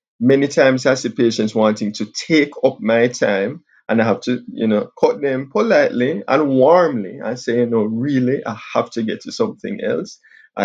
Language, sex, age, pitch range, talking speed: English, male, 20-39, 110-155 Hz, 190 wpm